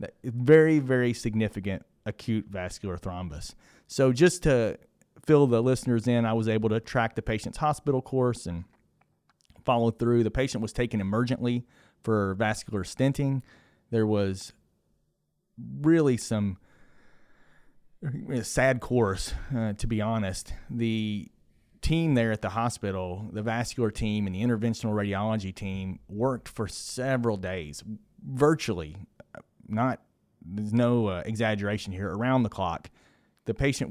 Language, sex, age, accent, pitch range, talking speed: English, male, 30-49, American, 105-125 Hz, 130 wpm